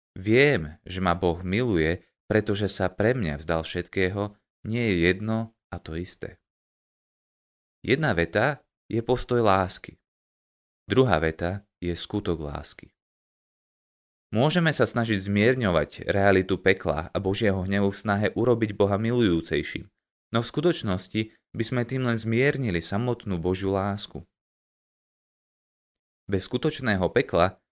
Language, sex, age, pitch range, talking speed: Slovak, male, 20-39, 90-115 Hz, 120 wpm